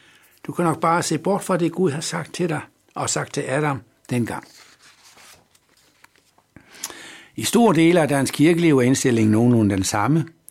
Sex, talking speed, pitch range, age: male, 165 wpm, 105-140 Hz, 60-79